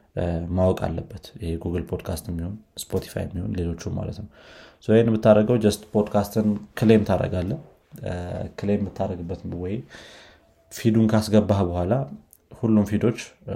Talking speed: 100 wpm